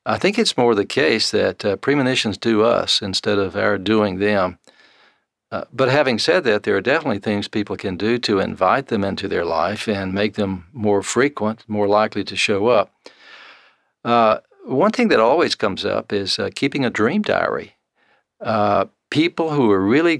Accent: American